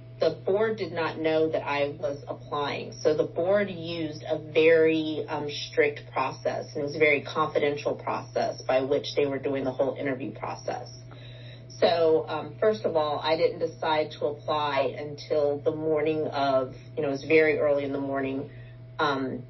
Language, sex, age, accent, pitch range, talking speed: English, female, 40-59, American, 130-165 Hz, 175 wpm